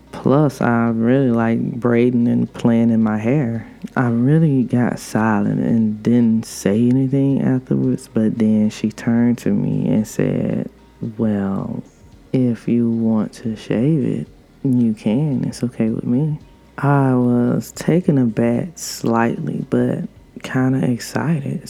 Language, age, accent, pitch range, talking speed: English, 20-39, American, 110-125 Hz, 140 wpm